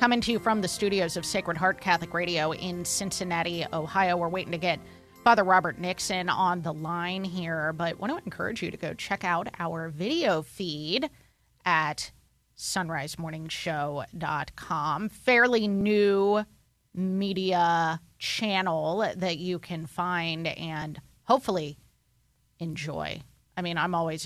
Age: 30-49